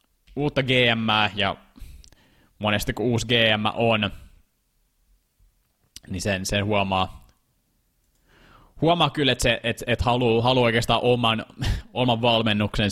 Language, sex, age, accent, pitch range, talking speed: Finnish, male, 20-39, native, 95-115 Hz, 105 wpm